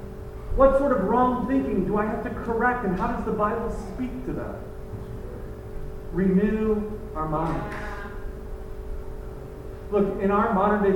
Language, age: English, 40-59